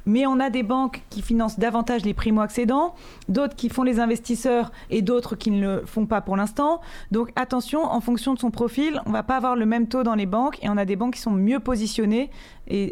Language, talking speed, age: French, 240 wpm, 30-49